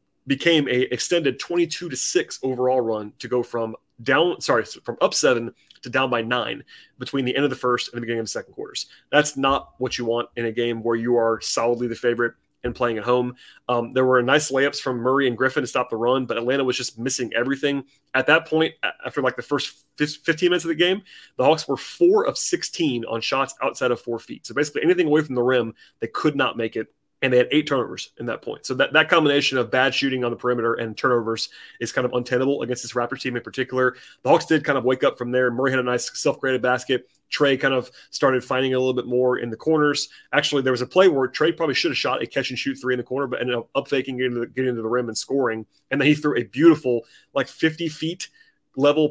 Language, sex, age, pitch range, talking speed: English, male, 30-49, 120-145 Hz, 250 wpm